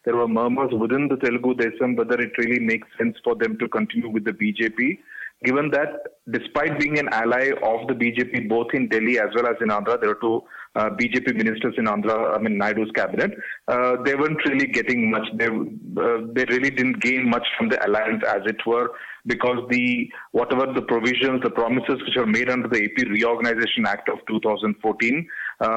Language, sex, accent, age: English, male, Indian, 30-49